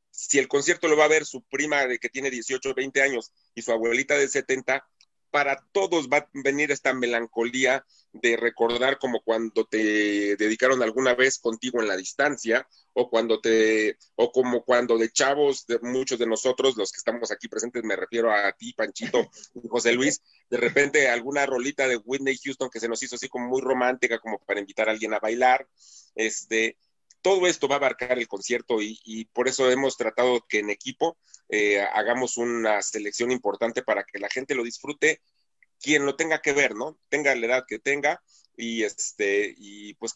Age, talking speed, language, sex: 40-59, 190 wpm, English, male